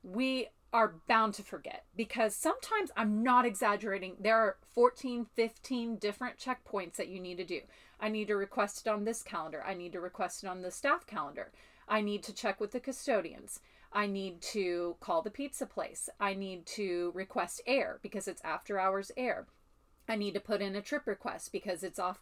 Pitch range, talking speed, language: 190-235 Hz, 195 wpm, English